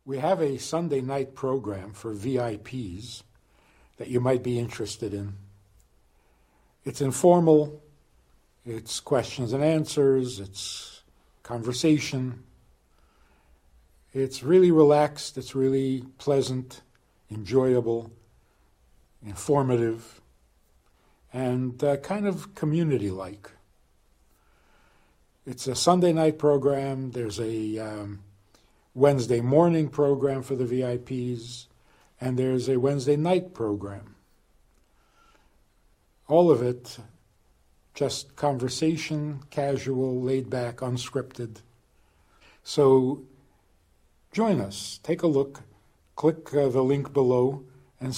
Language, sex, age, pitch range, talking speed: English, male, 60-79, 105-140 Hz, 95 wpm